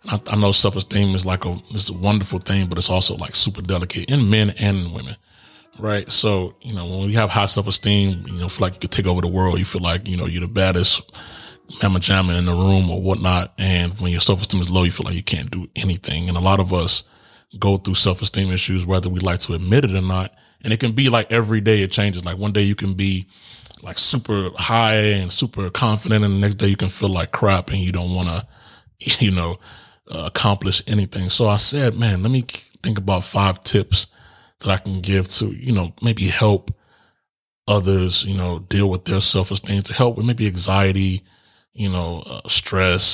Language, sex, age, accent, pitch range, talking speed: English, male, 30-49, American, 95-105 Hz, 225 wpm